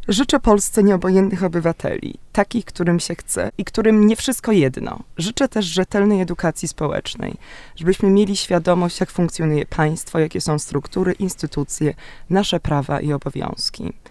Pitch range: 160-195 Hz